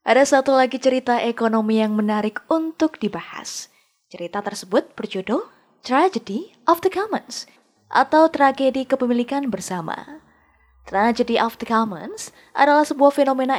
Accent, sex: native, female